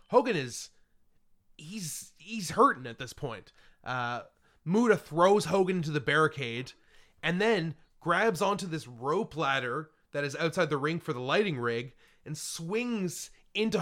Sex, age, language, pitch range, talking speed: male, 30-49, English, 150-200 Hz, 150 wpm